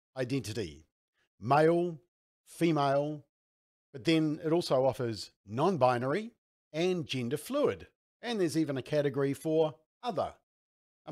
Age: 50-69